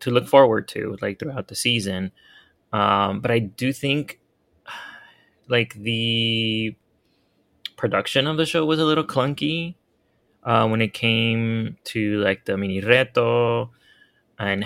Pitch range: 100-120 Hz